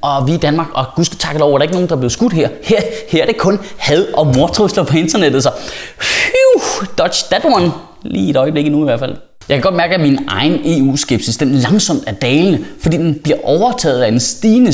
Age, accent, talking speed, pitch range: 20-39, native, 230 wpm, 160-230 Hz